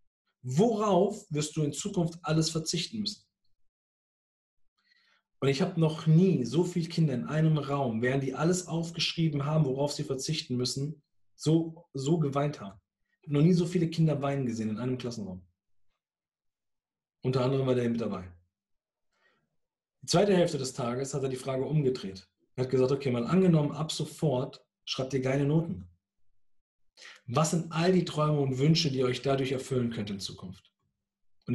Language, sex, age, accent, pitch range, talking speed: German, male, 40-59, German, 115-155 Hz, 165 wpm